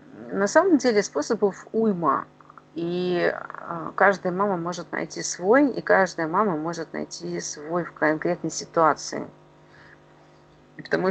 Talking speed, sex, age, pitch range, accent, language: 115 wpm, female, 30-49, 150-190 Hz, native, Russian